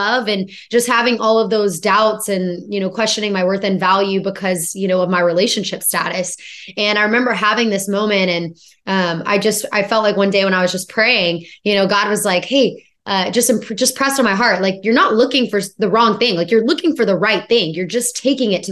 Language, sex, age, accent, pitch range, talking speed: English, female, 20-39, American, 195-245 Hz, 240 wpm